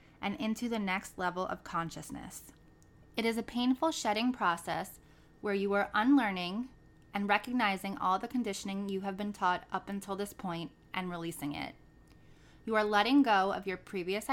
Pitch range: 175-225 Hz